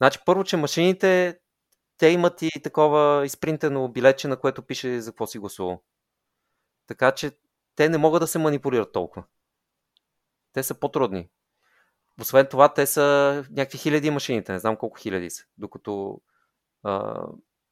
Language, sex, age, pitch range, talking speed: Bulgarian, male, 30-49, 120-155 Hz, 145 wpm